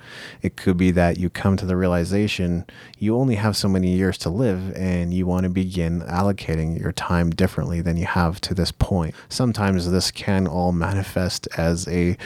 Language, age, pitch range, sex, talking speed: English, 30-49, 85-100 Hz, male, 190 wpm